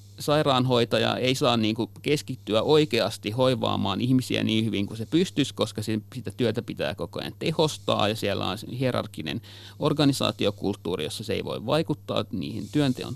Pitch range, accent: 100-120 Hz, native